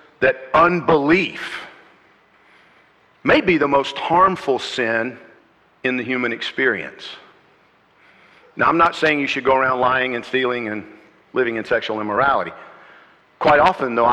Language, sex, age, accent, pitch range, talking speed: English, male, 50-69, American, 115-160 Hz, 130 wpm